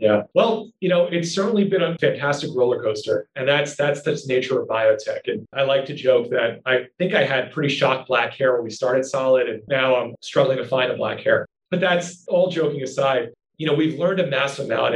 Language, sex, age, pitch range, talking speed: English, male, 30-49, 130-175 Hz, 235 wpm